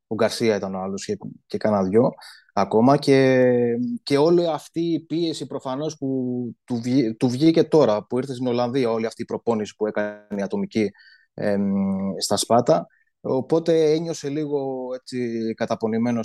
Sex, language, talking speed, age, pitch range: male, Greek, 150 wpm, 20-39, 115-150 Hz